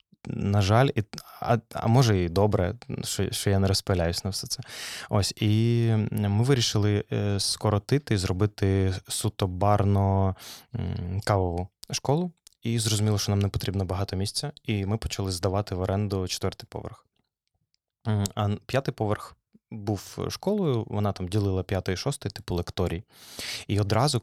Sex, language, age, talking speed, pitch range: male, Ukrainian, 20-39, 145 wpm, 95-115 Hz